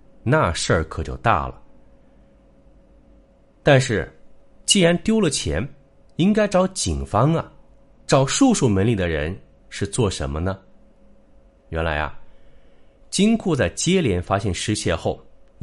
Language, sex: Chinese, male